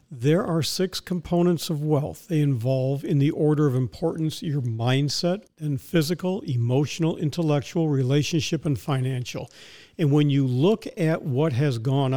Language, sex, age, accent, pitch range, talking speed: English, male, 50-69, American, 145-180 Hz, 150 wpm